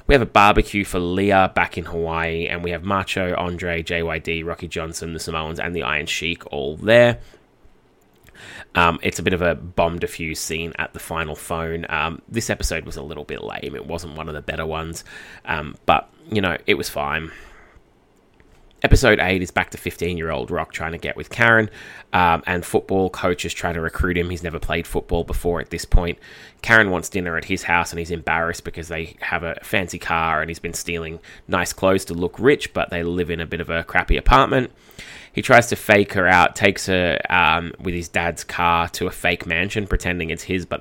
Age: 20-39